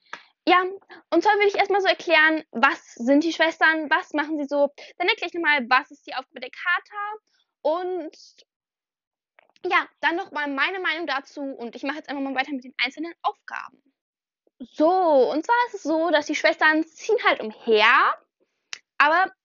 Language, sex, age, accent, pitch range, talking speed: German, female, 10-29, German, 260-360 Hz, 175 wpm